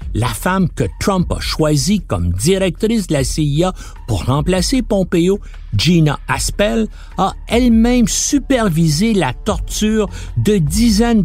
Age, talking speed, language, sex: 60-79, 125 wpm, French, male